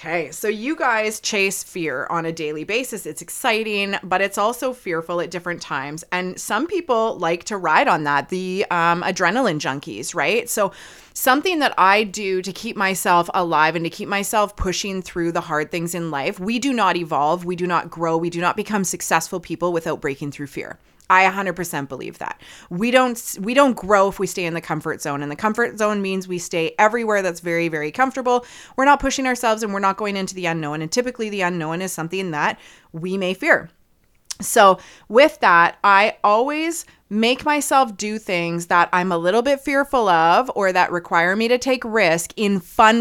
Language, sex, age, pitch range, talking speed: English, female, 30-49, 170-220 Hz, 200 wpm